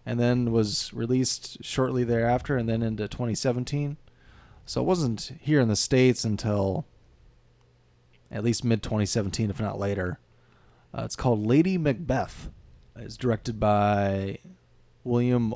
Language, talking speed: English, 125 wpm